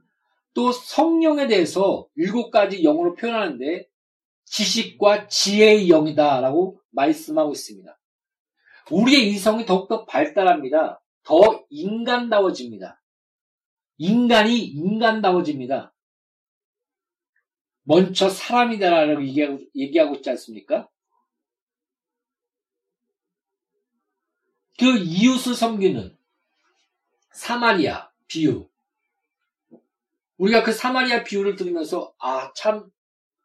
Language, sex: Korean, male